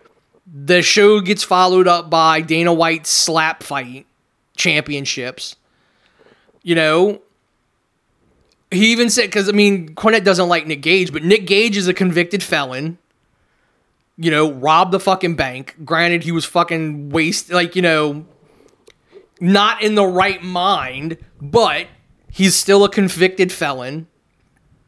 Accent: American